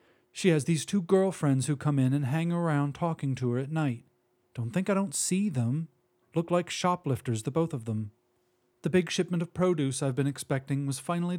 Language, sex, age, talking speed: English, male, 40-59, 205 wpm